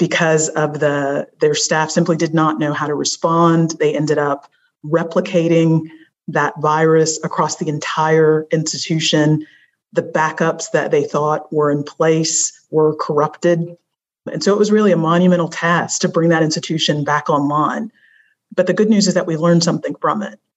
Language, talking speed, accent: English, 165 wpm, American